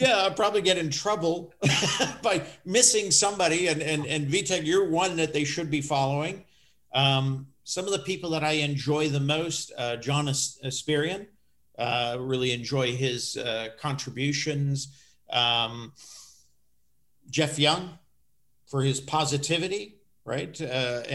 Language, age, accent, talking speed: English, 50-69, American, 135 wpm